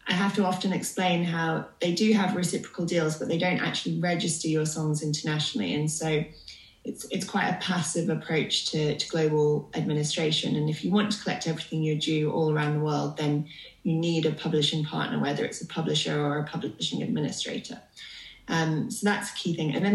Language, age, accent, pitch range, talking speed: English, 20-39, British, 155-190 Hz, 200 wpm